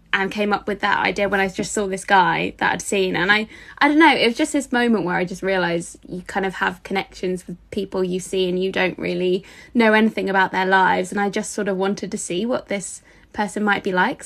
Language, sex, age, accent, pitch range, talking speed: English, female, 10-29, British, 190-225 Hz, 255 wpm